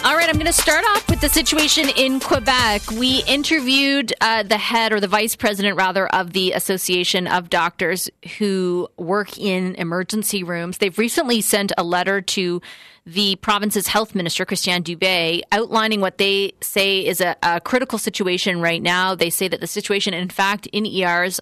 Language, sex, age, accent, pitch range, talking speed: English, female, 30-49, American, 180-225 Hz, 180 wpm